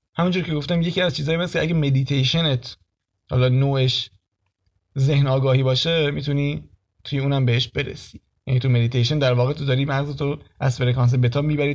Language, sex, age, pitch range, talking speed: Persian, male, 30-49, 120-155 Hz, 160 wpm